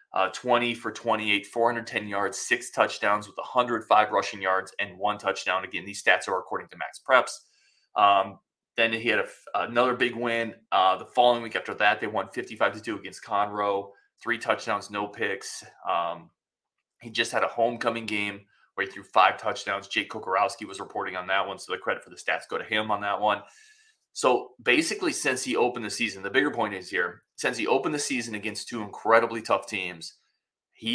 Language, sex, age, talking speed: English, male, 20-39, 190 wpm